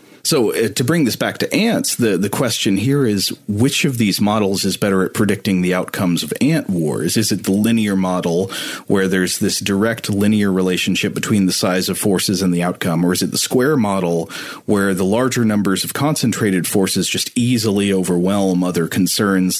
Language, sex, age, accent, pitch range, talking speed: English, male, 30-49, American, 95-115 Hz, 195 wpm